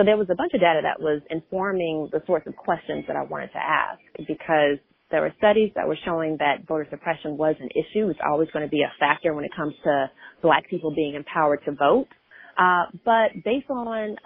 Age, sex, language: 30-49, female, English